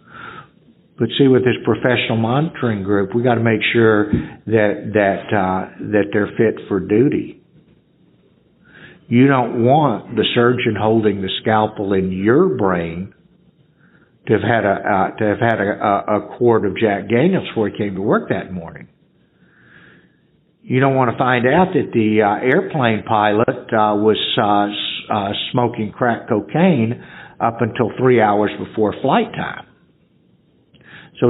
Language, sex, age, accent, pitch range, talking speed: English, male, 60-79, American, 105-125 Hz, 150 wpm